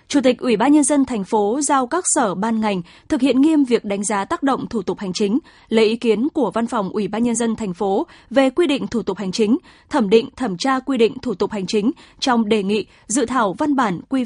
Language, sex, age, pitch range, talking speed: Vietnamese, female, 20-39, 215-270 Hz, 260 wpm